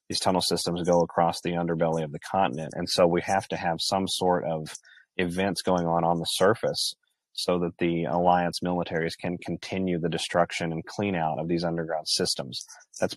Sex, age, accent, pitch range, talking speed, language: male, 30-49, American, 85-90 Hz, 190 wpm, English